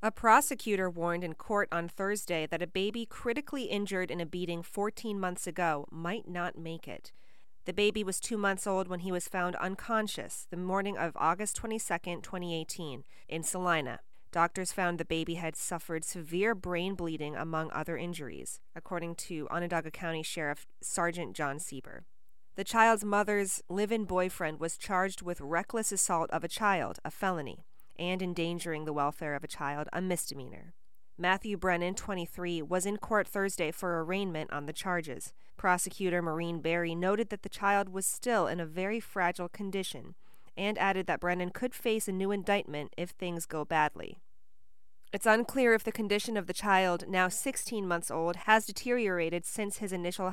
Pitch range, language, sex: 165-200 Hz, English, female